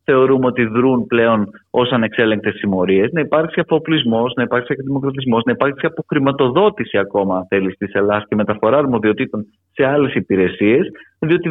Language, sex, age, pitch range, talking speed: Greek, male, 30-49, 110-155 Hz, 145 wpm